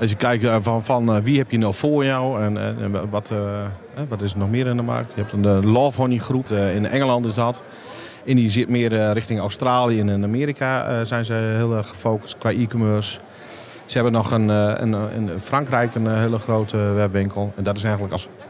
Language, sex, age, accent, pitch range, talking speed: Dutch, male, 40-59, Dutch, 105-125 Hz, 225 wpm